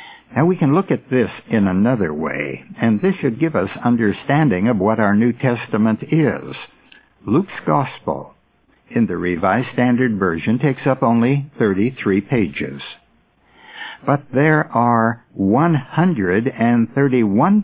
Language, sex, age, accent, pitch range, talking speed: English, male, 60-79, American, 105-140 Hz, 125 wpm